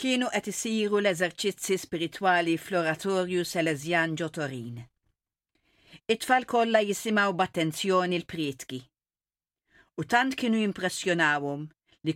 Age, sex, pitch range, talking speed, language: 50-69, female, 160-225 Hz, 80 wpm, English